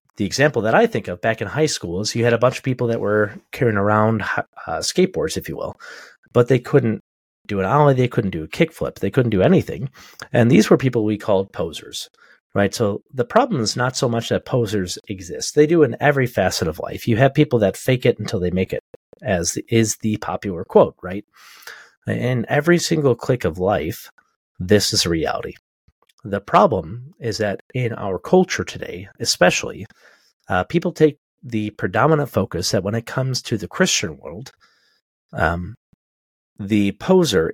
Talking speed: 190 wpm